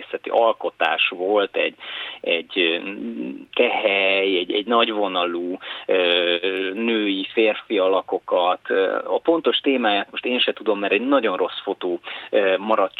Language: Hungarian